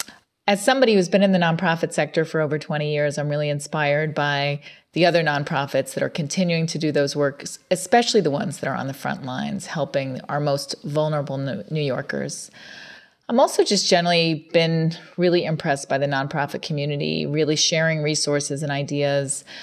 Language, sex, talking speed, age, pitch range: English, female, 175 wpm, 40-59, 145-170 Hz